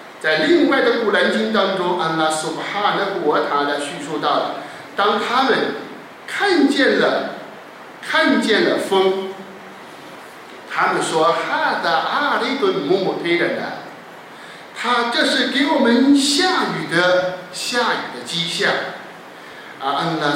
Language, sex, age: Chinese, male, 50-69